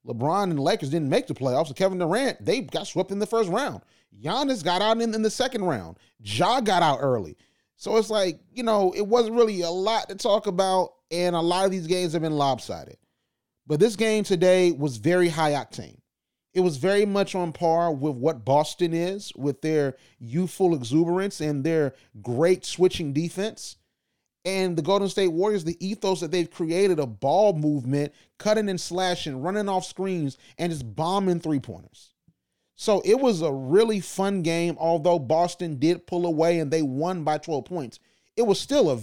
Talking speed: 190 wpm